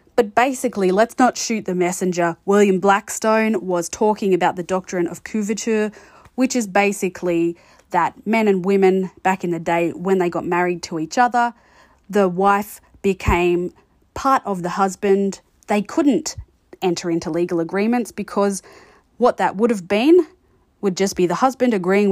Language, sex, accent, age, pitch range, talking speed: English, female, Australian, 20-39, 175-210 Hz, 160 wpm